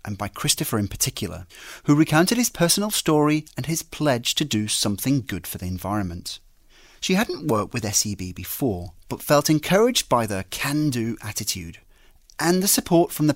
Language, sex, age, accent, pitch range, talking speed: English, male, 30-49, British, 105-160 Hz, 170 wpm